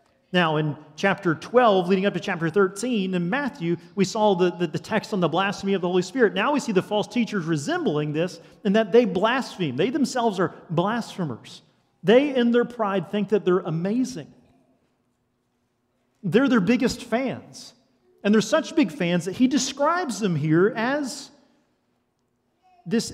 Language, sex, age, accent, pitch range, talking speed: English, male, 40-59, American, 170-230 Hz, 165 wpm